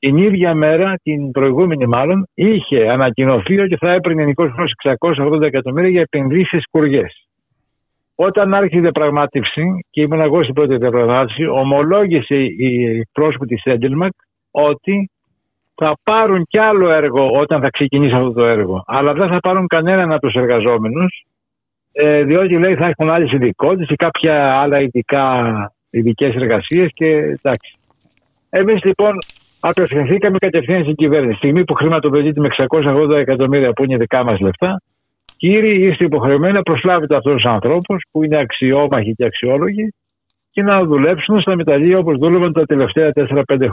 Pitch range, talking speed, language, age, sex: 135-180 Hz, 145 wpm, Greek, 60-79, male